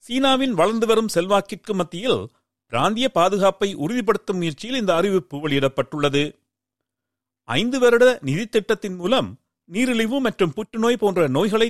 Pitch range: 150-230 Hz